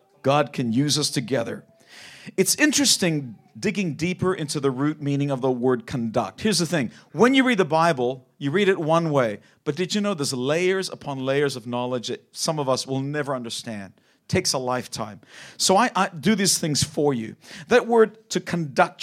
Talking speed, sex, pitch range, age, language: 195 wpm, male, 140-200 Hz, 50-69, English